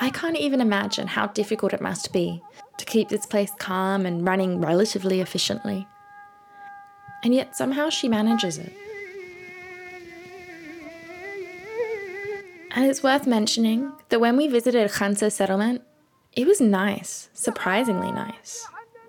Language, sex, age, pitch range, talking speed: English, female, 20-39, 195-295 Hz, 125 wpm